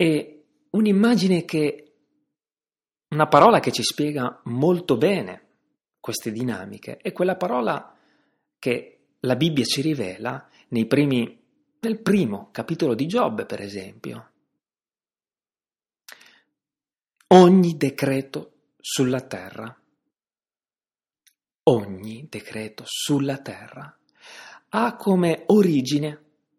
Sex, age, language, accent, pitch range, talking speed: male, 40-59, Italian, native, 120-195 Hz, 90 wpm